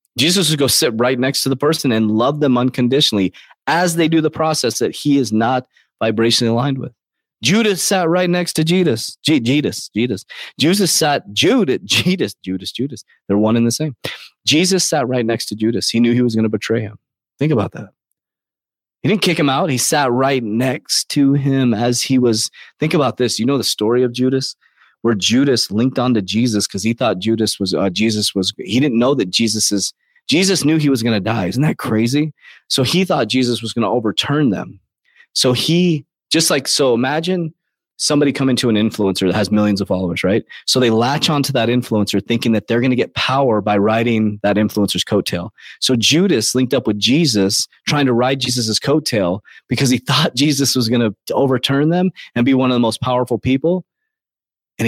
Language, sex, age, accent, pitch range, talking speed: English, male, 30-49, American, 110-145 Hz, 200 wpm